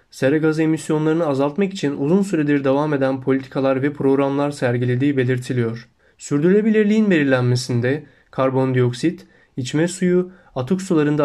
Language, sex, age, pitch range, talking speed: Turkish, male, 30-49, 130-160 Hz, 110 wpm